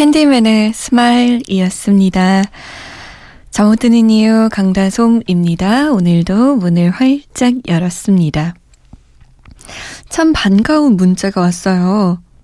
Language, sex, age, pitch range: Korean, female, 20-39, 185-240 Hz